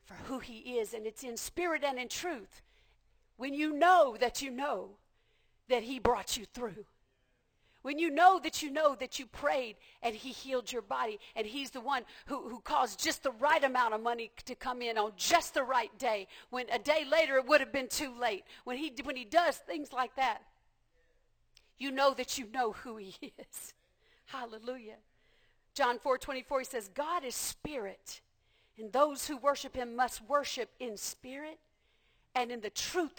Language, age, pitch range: English, 50-69, 235-295 Hz